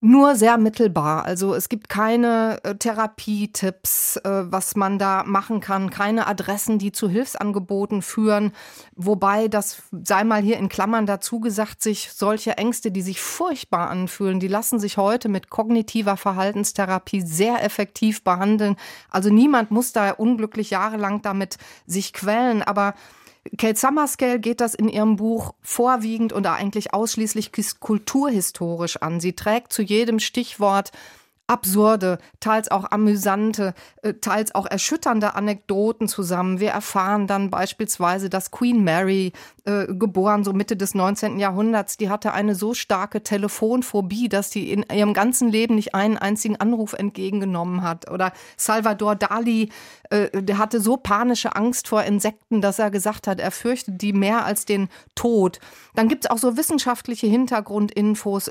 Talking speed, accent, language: 145 wpm, German, German